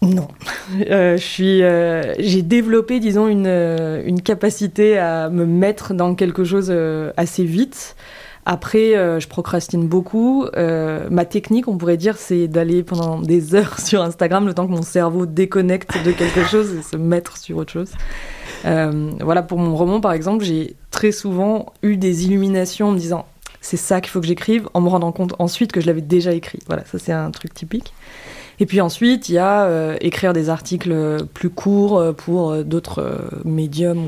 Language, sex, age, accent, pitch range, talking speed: French, female, 20-39, French, 170-195 Hz, 195 wpm